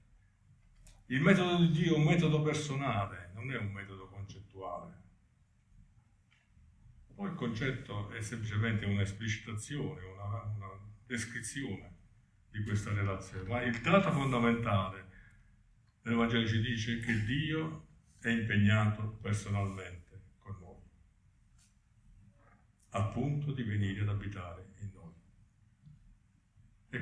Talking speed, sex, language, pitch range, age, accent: 105 wpm, male, Italian, 100-120 Hz, 50-69, native